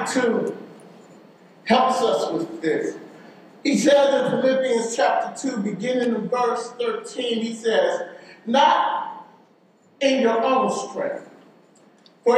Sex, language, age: male, English, 50-69